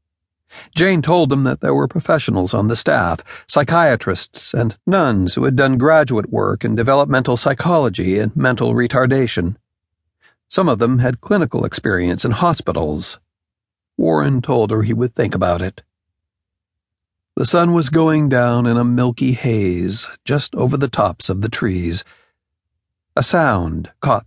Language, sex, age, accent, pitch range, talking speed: English, male, 60-79, American, 95-130 Hz, 145 wpm